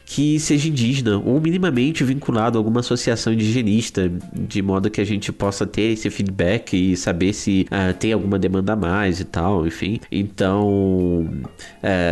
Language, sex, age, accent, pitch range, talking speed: Portuguese, male, 20-39, Brazilian, 100-120 Hz, 165 wpm